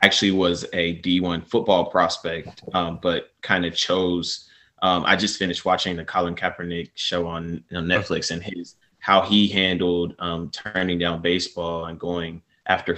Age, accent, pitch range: 20-39, American, 85-95 Hz